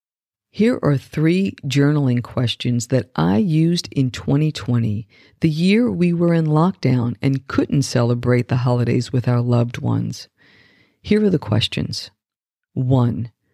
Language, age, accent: English, 50-69, American